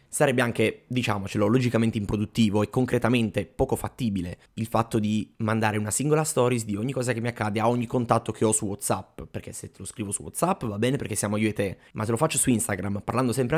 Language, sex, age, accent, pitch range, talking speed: Italian, male, 20-39, native, 105-125 Hz, 225 wpm